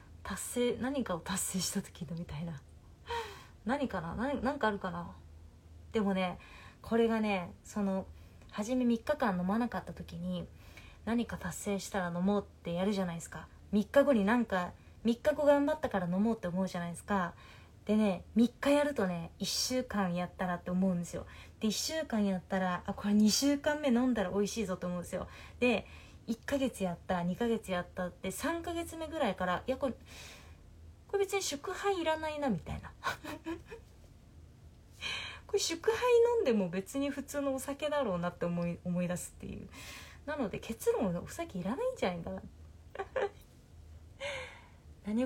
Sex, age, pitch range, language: female, 20-39, 175-260 Hz, Japanese